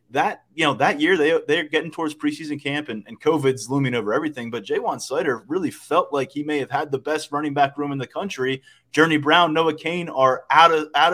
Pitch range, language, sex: 110-145 Hz, English, male